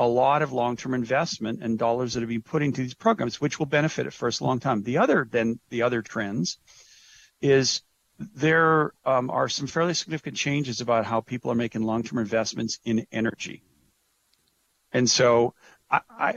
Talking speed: 170 wpm